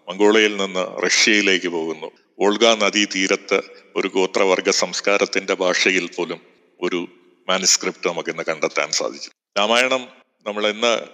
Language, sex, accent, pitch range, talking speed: Malayalam, male, native, 100-115 Hz, 100 wpm